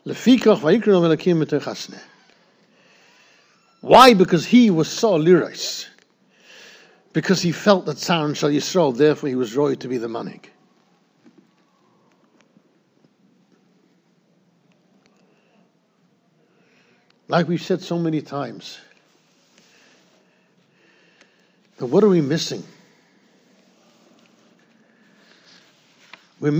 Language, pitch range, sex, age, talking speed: English, 160-215 Hz, male, 60-79, 75 wpm